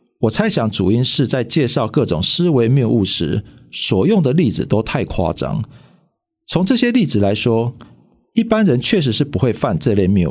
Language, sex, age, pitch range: Chinese, male, 40-59, 105-145 Hz